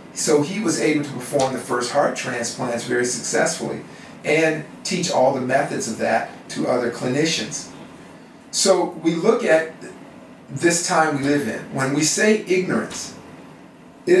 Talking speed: 150 wpm